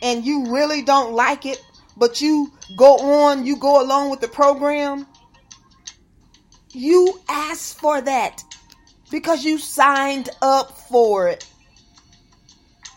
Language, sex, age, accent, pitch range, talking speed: English, female, 30-49, American, 240-315 Hz, 120 wpm